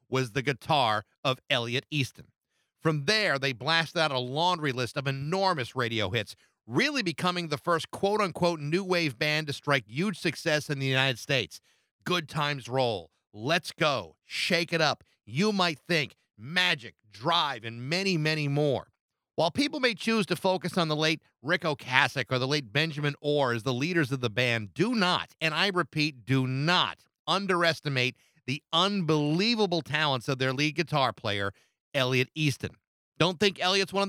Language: English